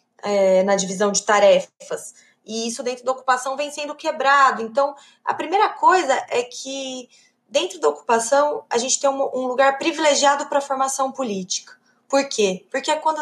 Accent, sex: Brazilian, female